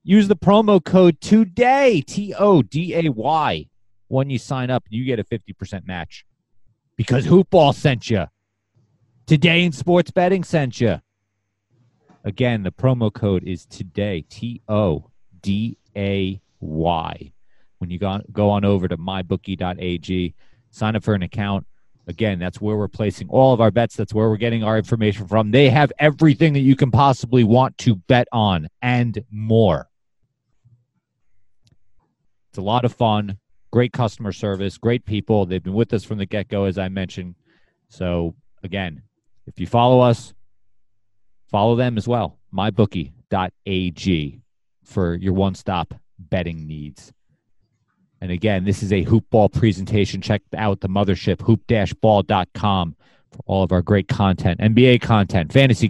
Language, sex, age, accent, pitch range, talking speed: English, male, 30-49, American, 95-125 Hz, 140 wpm